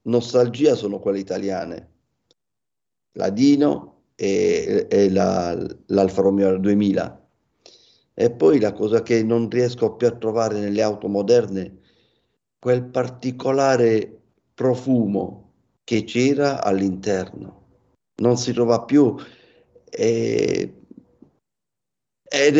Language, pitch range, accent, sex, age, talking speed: Italian, 100-125 Hz, native, male, 50-69, 100 wpm